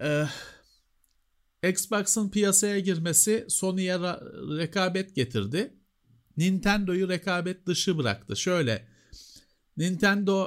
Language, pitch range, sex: Turkish, 110-185 Hz, male